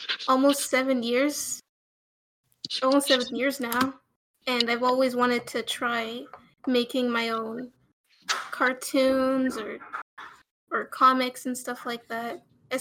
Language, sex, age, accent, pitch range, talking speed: English, female, 20-39, American, 240-270 Hz, 115 wpm